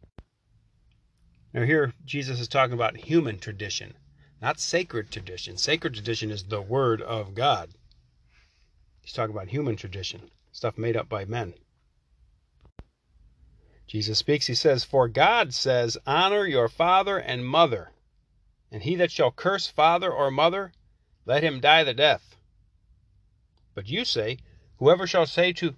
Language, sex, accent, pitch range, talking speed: English, male, American, 95-140 Hz, 140 wpm